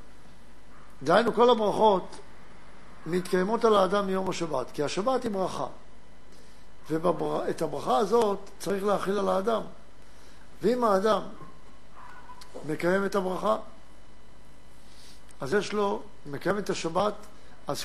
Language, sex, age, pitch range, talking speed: Hebrew, male, 60-79, 180-220 Hz, 100 wpm